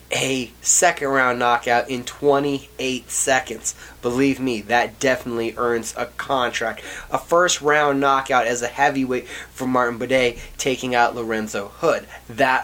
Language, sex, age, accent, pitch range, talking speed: English, male, 30-49, American, 110-135 Hz, 130 wpm